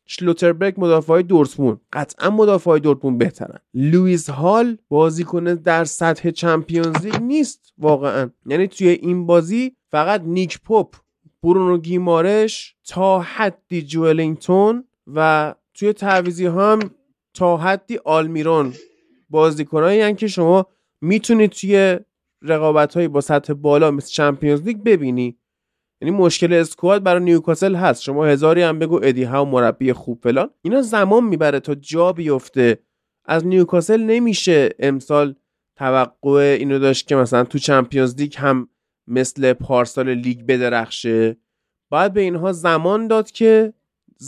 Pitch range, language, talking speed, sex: 145-195 Hz, Persian, 130 wpm, male